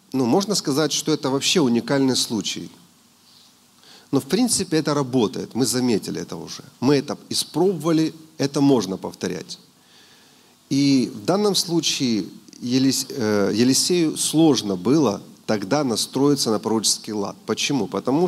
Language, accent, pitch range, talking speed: Russian, native, 115-155 Hz, 125 wpm